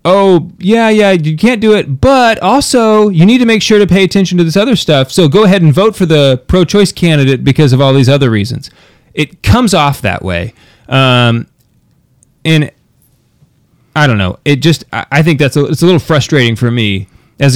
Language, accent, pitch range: English, American, 125-165 Hz